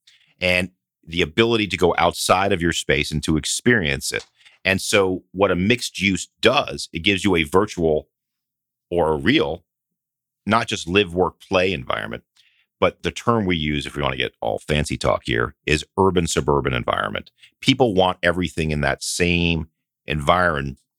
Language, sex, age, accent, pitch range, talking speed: English, male, 40-59, American, 80-100 Hz, 165 wpm